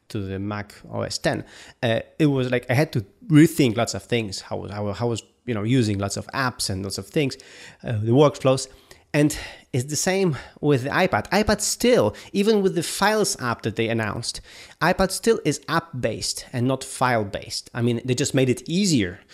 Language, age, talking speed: English, 30-49, 200 wpm